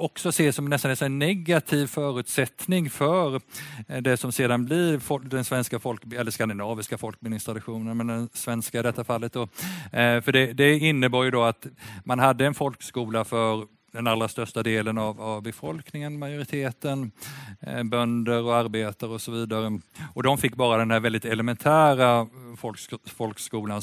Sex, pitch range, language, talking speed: male, 110-130 Hz, Swedish, 150 wpm